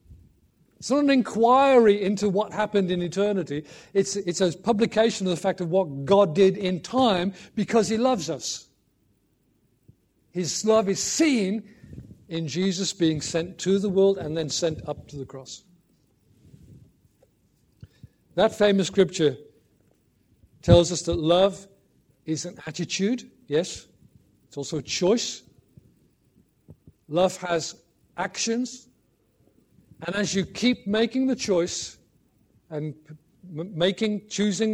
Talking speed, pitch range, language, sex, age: 125 wpm, 155-200 Hz, English, male, 50-69